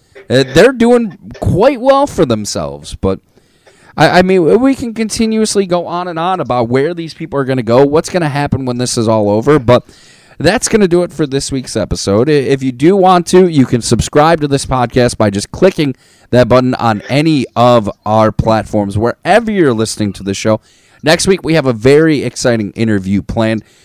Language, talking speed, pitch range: English, 205 wpm, 115-150 Hz